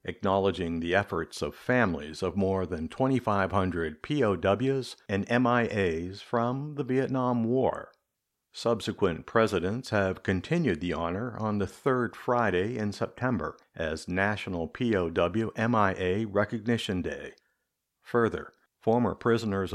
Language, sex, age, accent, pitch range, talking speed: English, male, 60-79, American, 95-120 Hz, 110 wpm